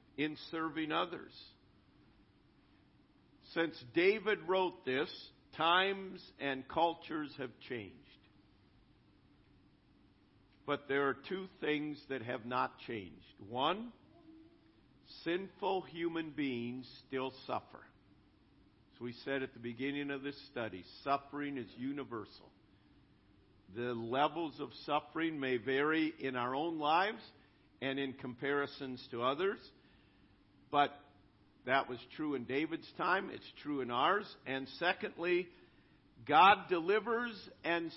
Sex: male